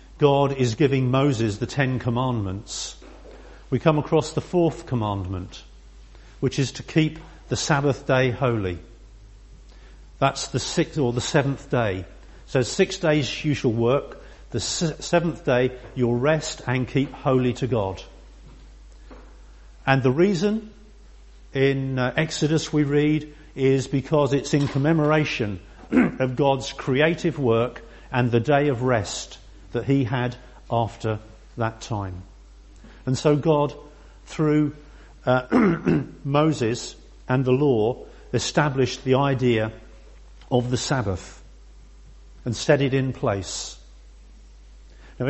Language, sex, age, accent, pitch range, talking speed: English, male, 50-69, British, 115-150 Hz, 120 wpm